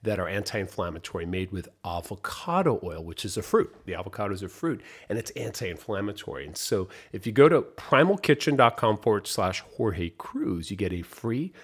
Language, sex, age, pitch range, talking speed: English, male, 40-59, 90-115 Hz, 175 wpm